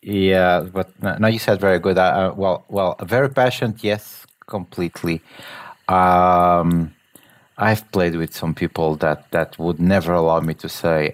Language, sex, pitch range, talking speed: English, male, 85-105 Hz, 155 wpm